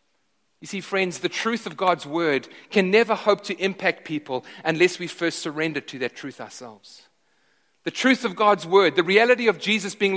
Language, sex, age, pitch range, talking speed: English, male, 30-49, 180-245 Hz, 190 wpm